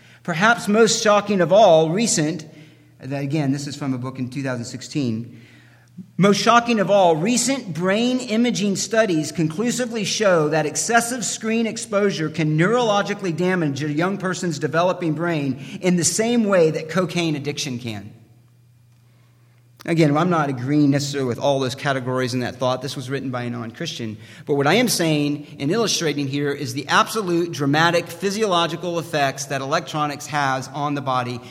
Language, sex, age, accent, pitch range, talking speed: English, male, 40-59, American, 135-180 Hz, 160 wpm